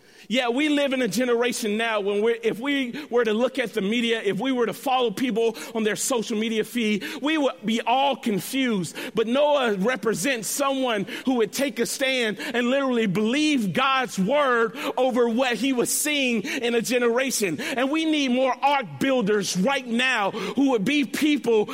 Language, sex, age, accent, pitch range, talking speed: English, male, 40-59, American, 220-270 Hz, 185 wpm